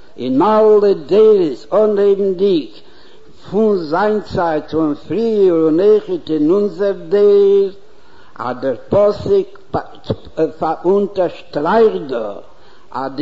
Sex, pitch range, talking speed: male, 165-225 Hz, 90 wpm